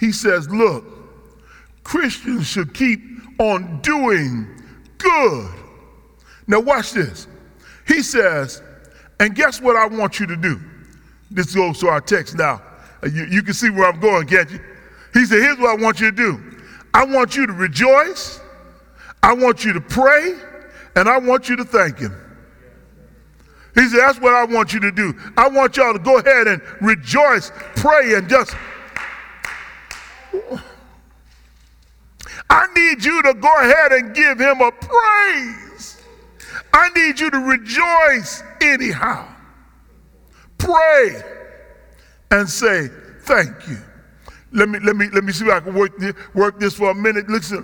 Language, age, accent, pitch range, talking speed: English, 40-59, American, 180-260 Hz, 155 wpm